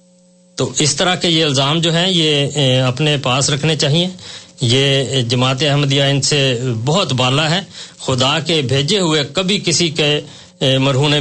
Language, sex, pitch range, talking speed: Urdu, male, 130-160 Hz, 155 wpm